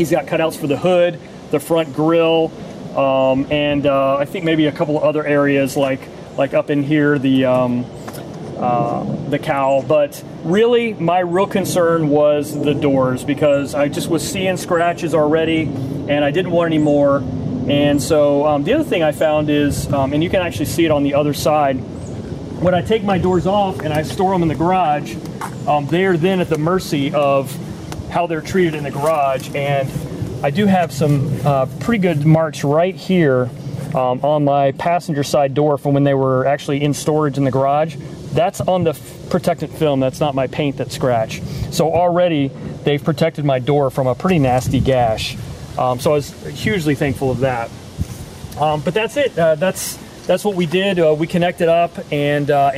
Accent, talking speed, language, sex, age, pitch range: American, 195 wpm, English, male, 30-49, 140-170 Hz